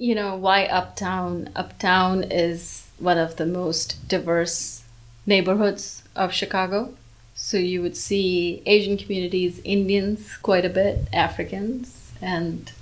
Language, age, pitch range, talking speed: English, 30-49, 175-205 Hz, 120 wpm